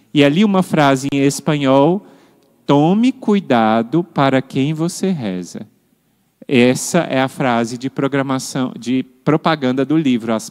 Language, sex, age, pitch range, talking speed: Portuguese, male, 40-59, 125-170 Hz, 130 wpm